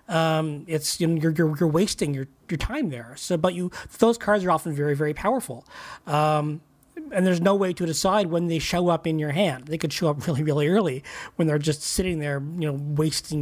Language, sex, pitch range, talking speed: English, male, 155-190 Hz, 230 wpm